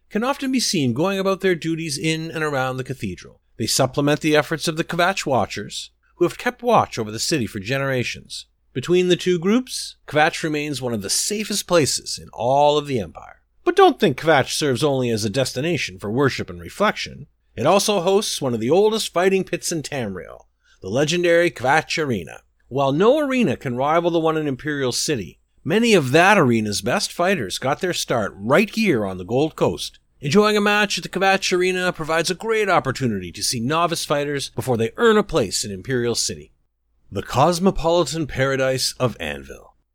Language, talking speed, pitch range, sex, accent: English, 190 wpm, 125-185 Hz, male, American